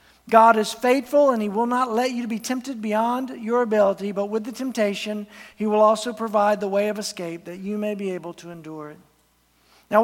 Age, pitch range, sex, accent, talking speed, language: 50-69, 205-245 Hz, male, American, 210 wpm, English